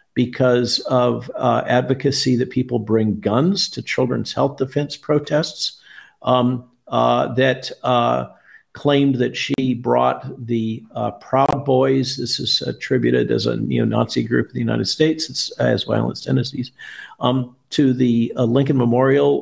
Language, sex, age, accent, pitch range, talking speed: English, male, 50-69, American, 115-140 Hz, 140 wpm